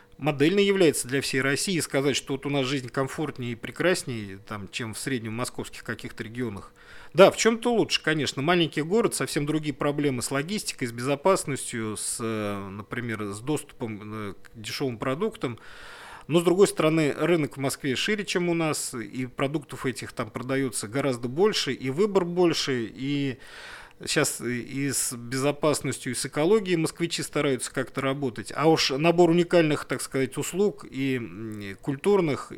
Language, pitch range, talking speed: Russian, 120-160 Hz, 155 wpm